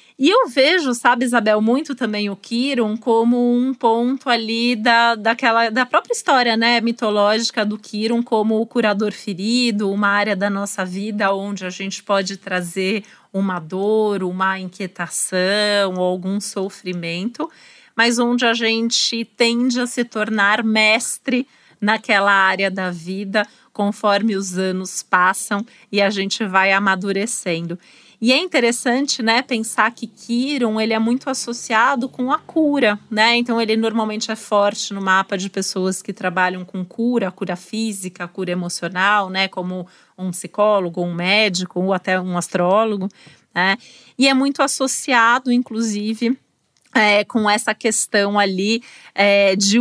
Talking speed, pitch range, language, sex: 140 wpm, 195-235 Hz, Portuguese, female